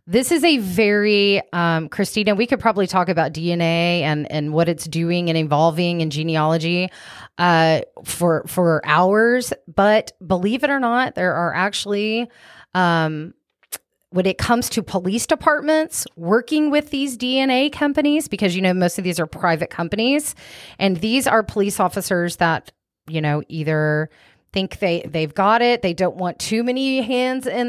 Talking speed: 165 wpm